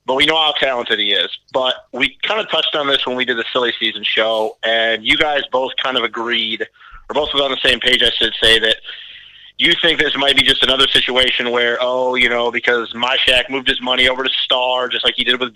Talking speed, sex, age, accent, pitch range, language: 250 wpm, male, 30-49, American, 120-140 Hz, English